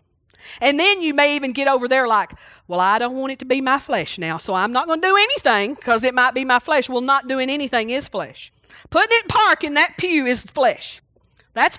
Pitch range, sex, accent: 235-330 Hz, female, American